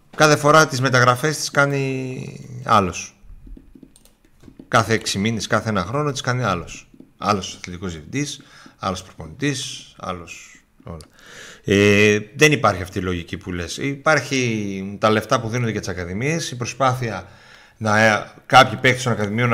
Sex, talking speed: male, 140 wpm